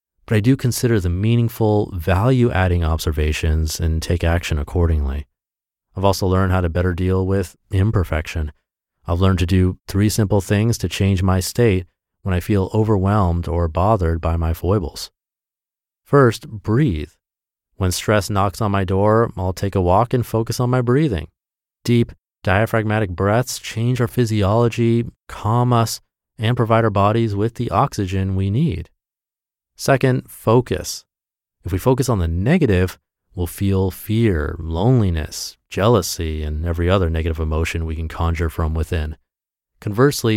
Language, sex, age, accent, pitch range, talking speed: English, male, 30-49, American, 85-115 Hz, 145 wpm